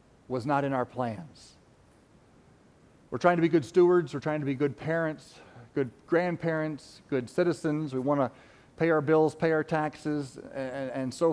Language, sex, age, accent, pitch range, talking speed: English, male, 40-59, American, 140-205 Hz, 175 wpm